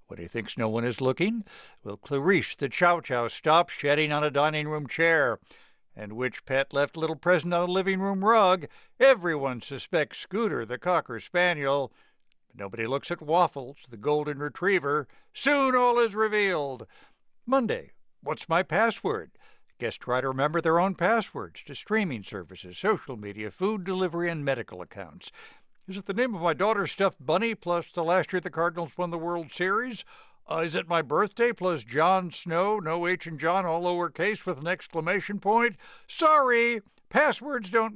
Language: English